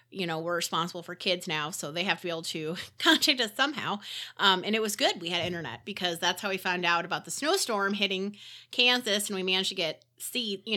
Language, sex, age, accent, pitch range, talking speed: English, female, 30-49, American, 180-230 Hz, 240 wpm